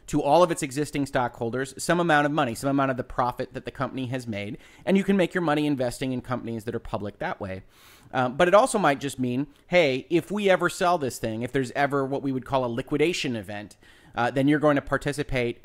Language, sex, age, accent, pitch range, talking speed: English, male, 30-49, American, 120-145 Hz, 245 wpm